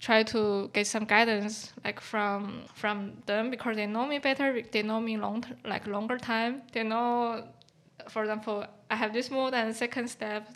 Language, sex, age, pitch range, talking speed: English, female, 10-29, 210-235 Hz, 190 wpm